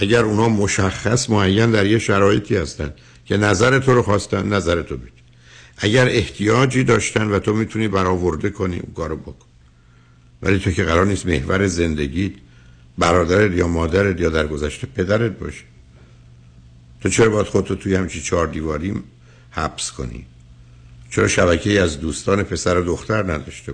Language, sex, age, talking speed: Persian, male, 60-79, 145 wpm